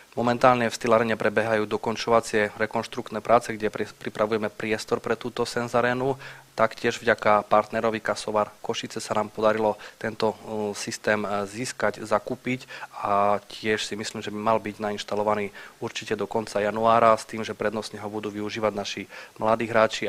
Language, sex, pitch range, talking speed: Slovak, male, 105-115 Hz, 145 wpm